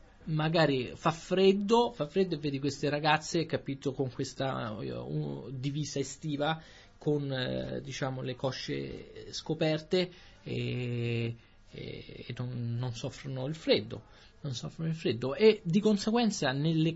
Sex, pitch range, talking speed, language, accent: male, 110-150 Hz, 125 wpm, Italian, native